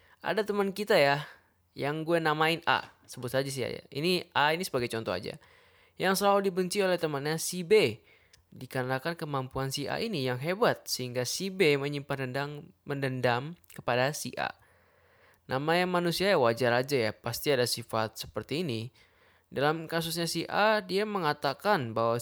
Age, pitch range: 20-39, 125-170 Hz